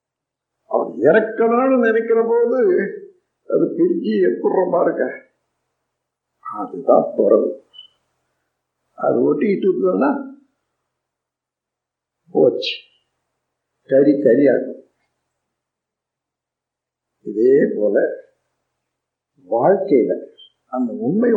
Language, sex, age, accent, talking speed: Tamil, male, 50-69, native, 60 wpm